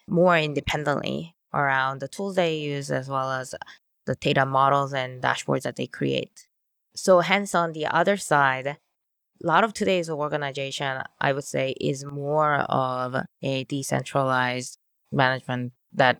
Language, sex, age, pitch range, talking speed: English, female, 20-39, 135-170 Hz, 145 wpm